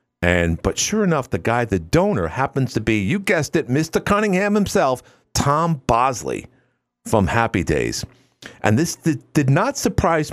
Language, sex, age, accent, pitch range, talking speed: English, male, 50-69, American, 90-135 Hz, 155 wpm